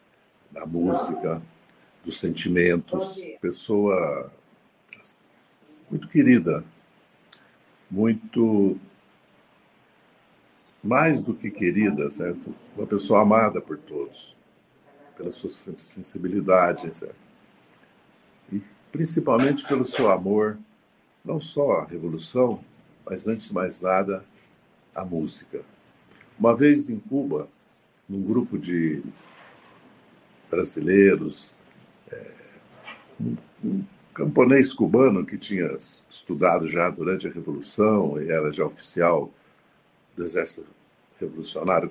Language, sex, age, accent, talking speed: Portuguese, male, 60-79, Brazilian, 90 wpm